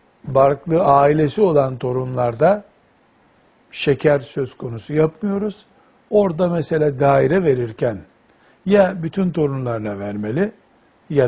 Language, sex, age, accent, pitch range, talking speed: Turkish, male, 60-79, native, 130-180 Hz, 90 wpm